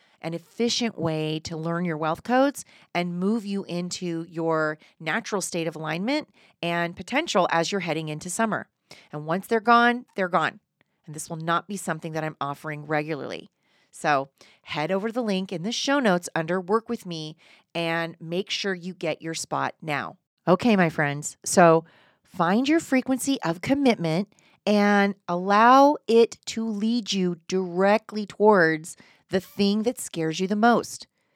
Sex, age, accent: female, 30-49, American